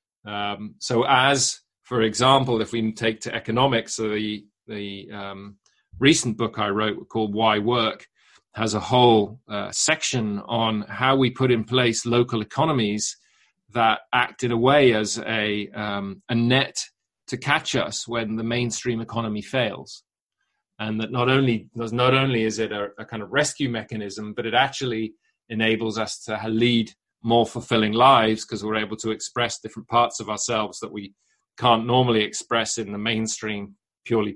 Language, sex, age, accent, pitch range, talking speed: English, male, 30-49, British, 110-130 Hz, 165 wpm